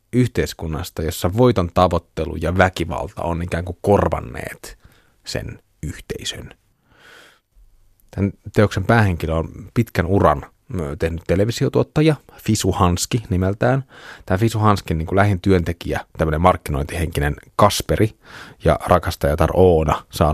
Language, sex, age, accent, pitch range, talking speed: Finnish, male, 30-49, native, 85-105 Hz, 105 wpm